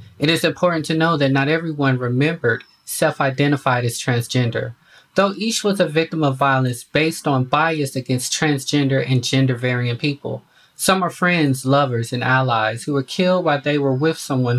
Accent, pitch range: American, 125-160 Hz